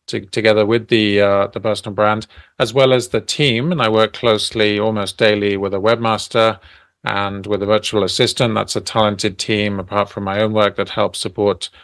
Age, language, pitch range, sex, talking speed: 40-59, English, 105-115 Hz, male, 200 wpm